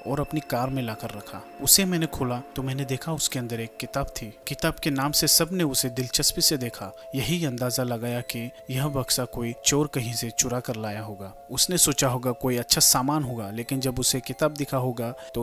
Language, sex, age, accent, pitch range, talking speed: Hindi, male, 30-49, native, 120-150 Hz, 200 wpm